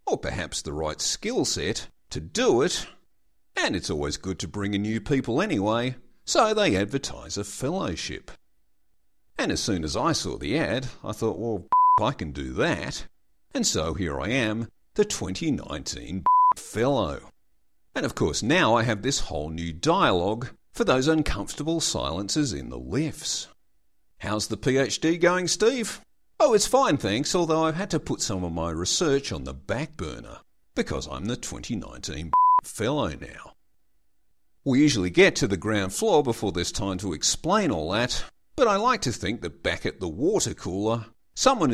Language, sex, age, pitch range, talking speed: English, male, 50-69, 100-160 Hz, 170 wpm